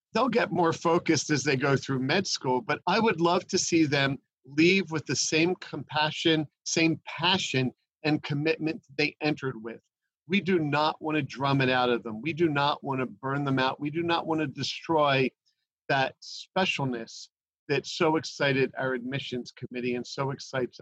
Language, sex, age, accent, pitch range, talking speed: English, male, 50-69, American, 130-160 Hz, 185 wpm